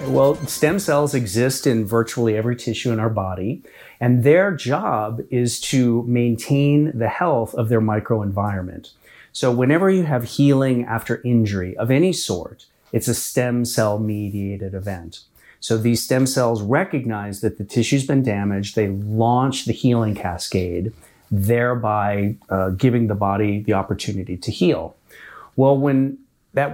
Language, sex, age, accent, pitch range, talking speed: English, male, 40-59, American, 105-125 Hz, 145 wpm